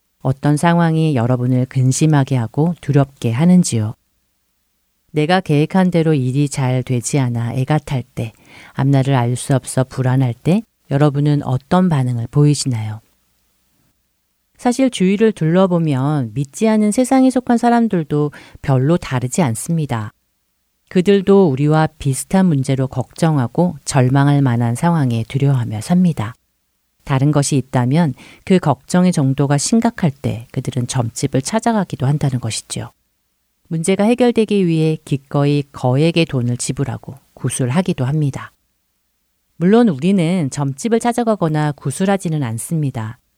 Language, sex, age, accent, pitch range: Korean, female, 40-59, native, 125-170 Hz